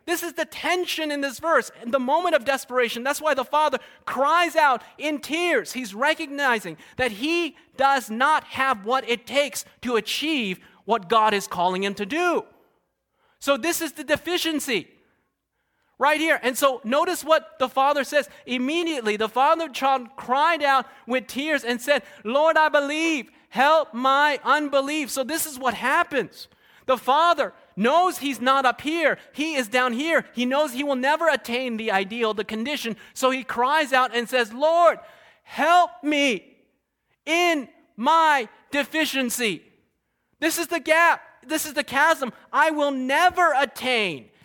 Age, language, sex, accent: 30-49, English, male, American